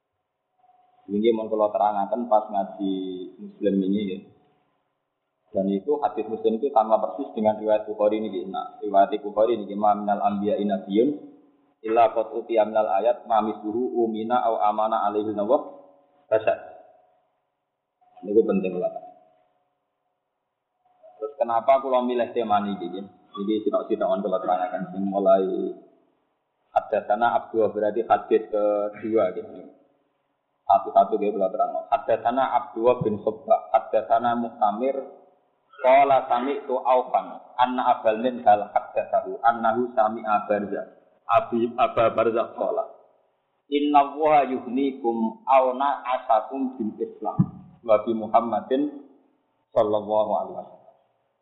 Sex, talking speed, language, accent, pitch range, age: male, 130 wpm, Indonesian, native, 105-135 Hz, 30-49